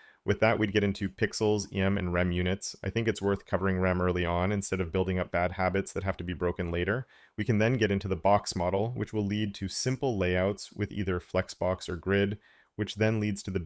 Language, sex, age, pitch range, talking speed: English, male, 30-49, 95-115 Hz, 235 wpm